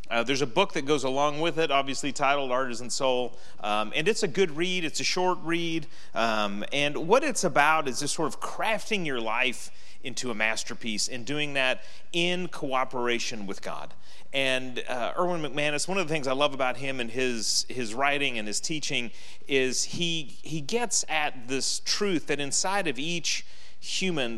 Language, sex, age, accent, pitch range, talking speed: English, male, 40-59, American, 125-160 Hz, 185 wpm